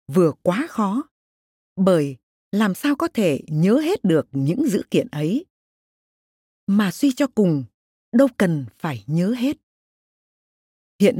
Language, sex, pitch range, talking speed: Vietnamese, female, 165-260 Hz, 135 wpm